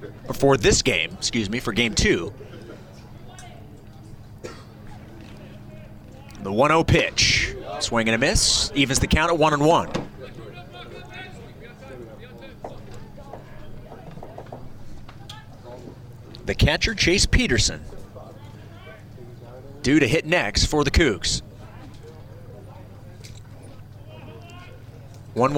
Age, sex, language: 30-49, male, English